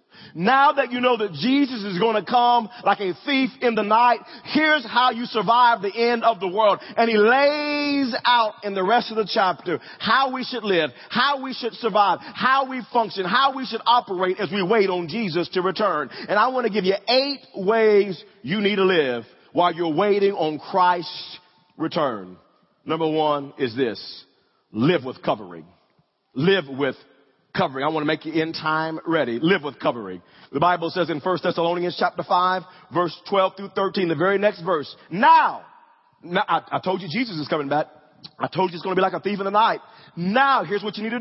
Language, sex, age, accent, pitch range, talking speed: English, male, 40-59, American, 175-235 Hz, 205 wpm